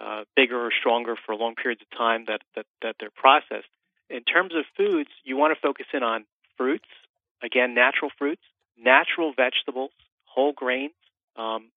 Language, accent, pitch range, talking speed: English, American, 120-145 Hz, 165 wpm